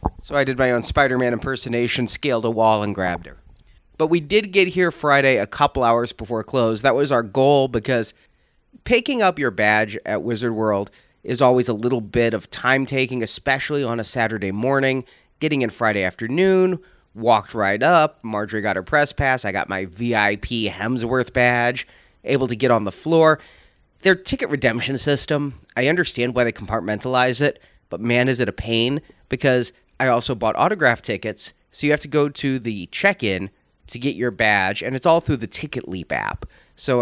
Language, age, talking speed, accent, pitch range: English, 30-49, 185 wpm, American, 105-140 Hz